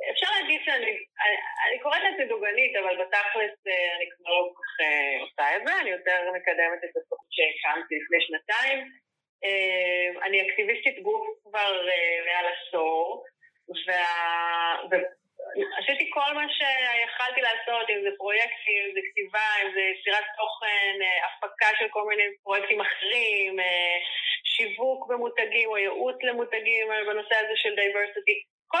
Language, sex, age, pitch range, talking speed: Hebrew, female, 20-39, 185-275 Hz, 140 wpm